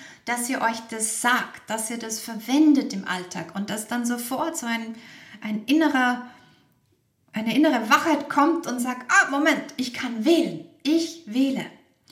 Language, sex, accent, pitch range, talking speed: German, female, German, 220-300 Hz, 140 wpm